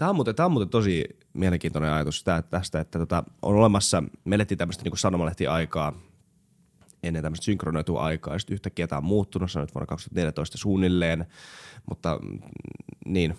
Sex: male